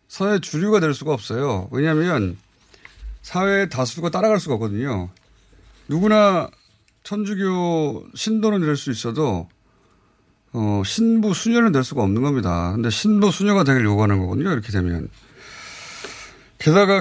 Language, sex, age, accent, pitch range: Korean, male, 30-49, native, 105-155 Hz